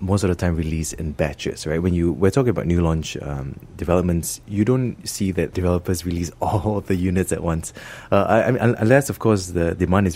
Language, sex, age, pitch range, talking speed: English, male, 20-39, 80-110 Hz, 225 wpm